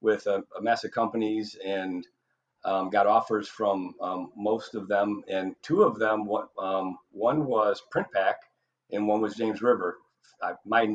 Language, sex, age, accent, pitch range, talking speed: English, male, 40-59, American, 95-110 Hz, 160 wpm